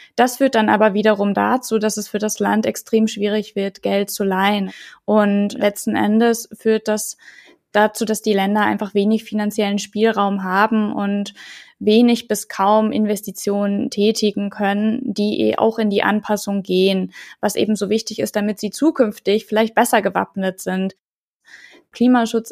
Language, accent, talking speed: German, German, 155 wpm